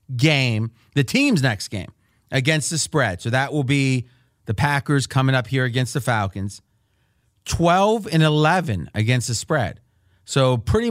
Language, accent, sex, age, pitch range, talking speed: English, American, male, 30-49, 115-160 Hz, 155 wpm